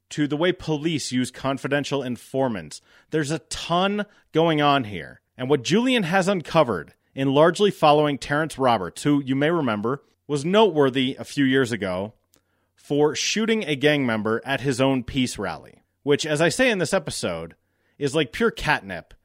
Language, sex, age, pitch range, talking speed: English, male, 30-49, 110-160 Hz, 170 wpm